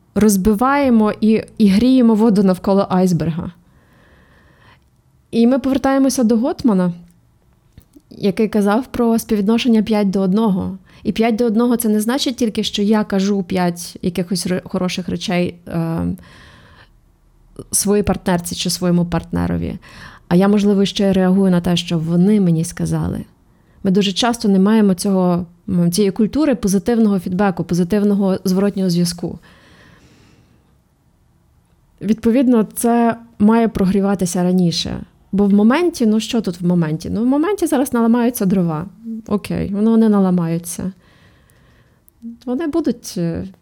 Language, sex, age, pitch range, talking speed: Ukrainian, female, 20-39, 180-225 Hz, 120 wpm